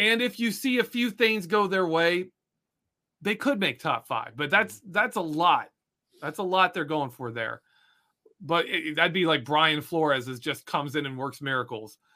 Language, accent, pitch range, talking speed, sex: English, American, 145-200 Hz, 200 wpm, male